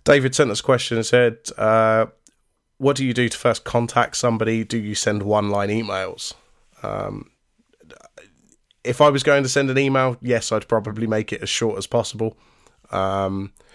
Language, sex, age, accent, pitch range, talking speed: English, male, 20-39, British, 100-120 Hz, 175 wpm